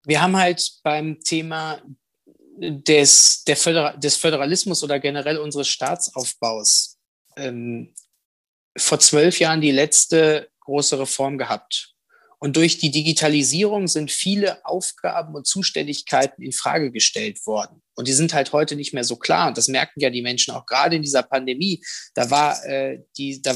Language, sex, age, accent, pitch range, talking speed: German, male, 20-39, German, 140-165 Hz, 150 wpm